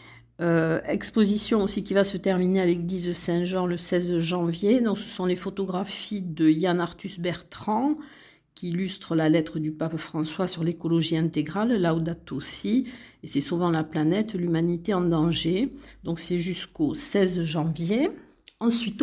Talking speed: 160 wpm